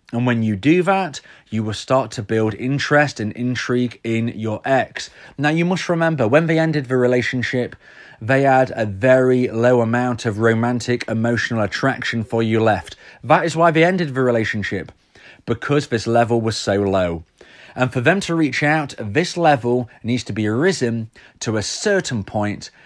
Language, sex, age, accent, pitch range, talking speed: English, male, 30-49, British, 110-145 Hz, 175 wpm